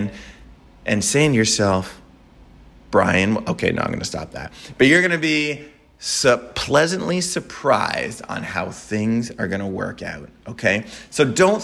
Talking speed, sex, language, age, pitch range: 160 wpm, male, English, 30-49, 105-130 Hz